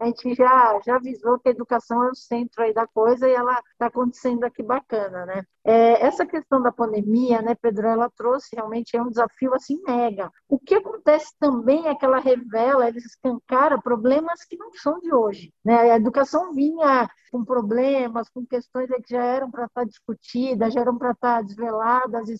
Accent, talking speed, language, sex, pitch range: Brazilian, 195 wpm, Portuguese, female, 235-275 Hz